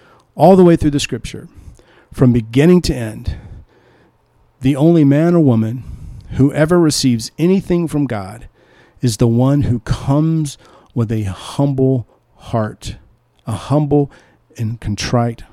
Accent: American